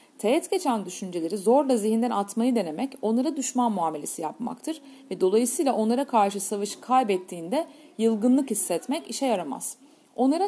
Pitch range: 210-275 Hz